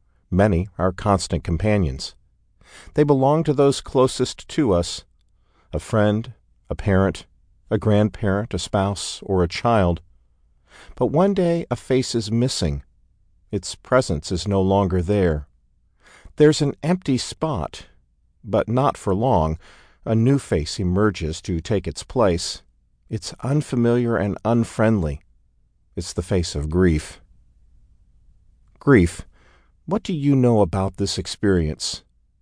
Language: English